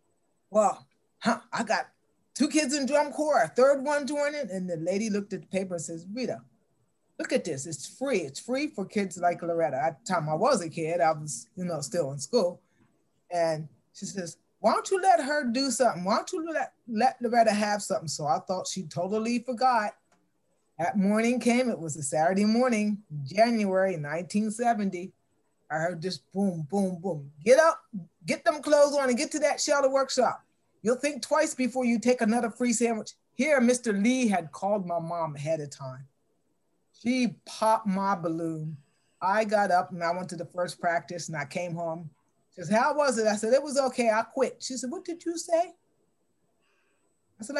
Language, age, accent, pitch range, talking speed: English, 30-49, American, 170-255 Hz, 200 wpm